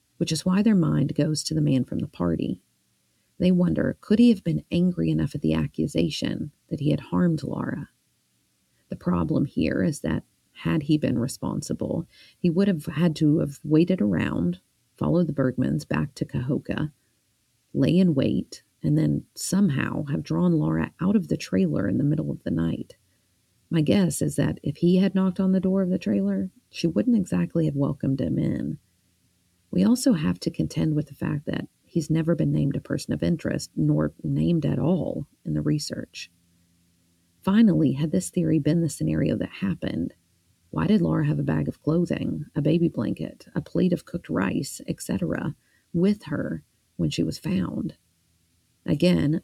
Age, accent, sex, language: 40-59, American, female, English